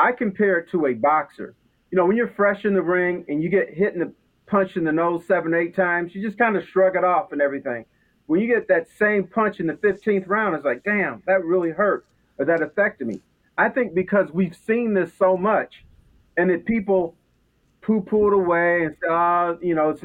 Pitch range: 165-205 Hz